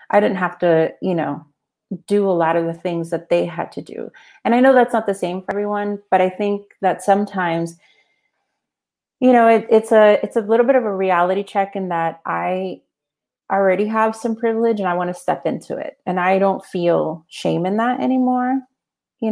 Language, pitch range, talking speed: English, 180-230 Hz, 210 wpm